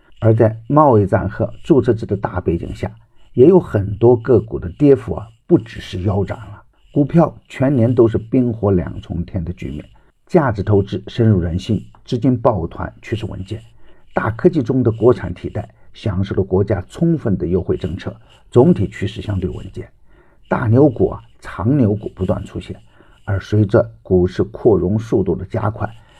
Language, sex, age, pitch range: Chinese, male, 50-69, 95-120 Hz